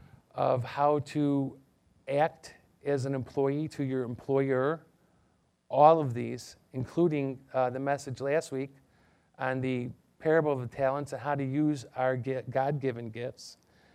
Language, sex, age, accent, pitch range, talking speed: English, male, 40-59, American, 115-145 Hz, 140 wpm